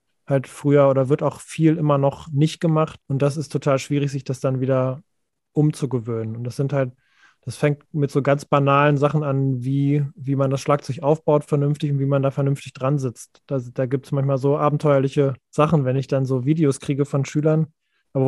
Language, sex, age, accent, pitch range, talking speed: German, male, 20-39, German, 135-150 Hz, 205 wpm